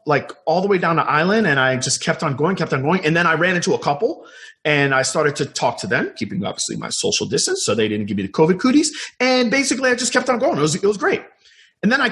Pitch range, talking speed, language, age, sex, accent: 135-220 Hz, 285 wpm, English, 30-49, male, American